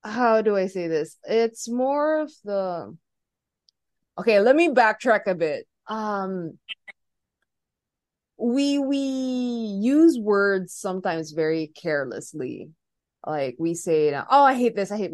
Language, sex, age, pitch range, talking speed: English, female, 20-39, 165-220 Hz, 130 wpm